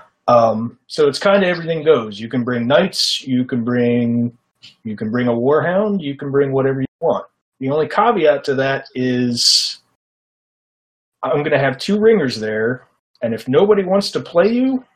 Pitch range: 115-165 Hz